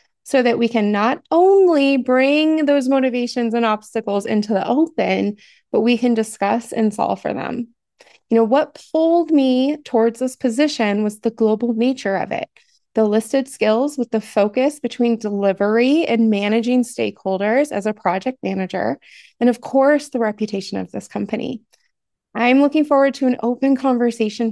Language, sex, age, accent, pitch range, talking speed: English, female, 20-39, American, 215-275 Hz, 160 wpm